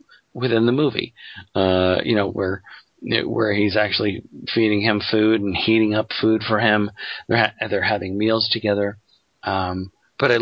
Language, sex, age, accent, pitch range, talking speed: English, male, 40-59, American, 100-120 Hz, 160 wpm